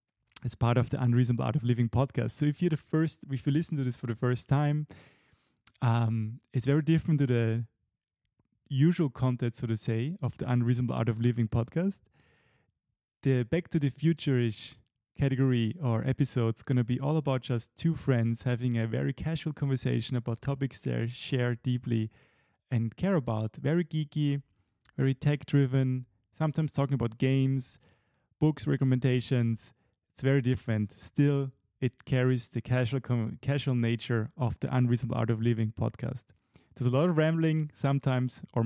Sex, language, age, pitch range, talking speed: male, English, 30-49, 115-140 Hz, 165 wpm